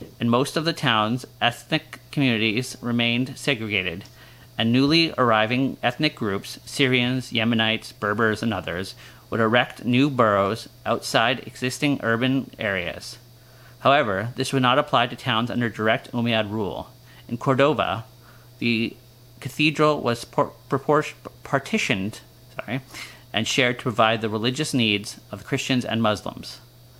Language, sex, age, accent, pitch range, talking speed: English, male, 30-49, American, 110-130 Hz, 120 wpm